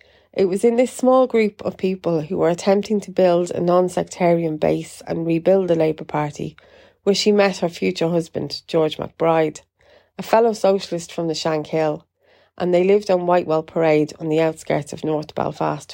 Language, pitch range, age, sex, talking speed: English, 160-200 Hz, 30-49, female, 180 wpm